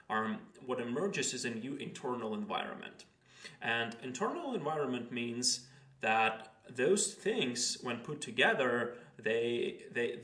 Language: English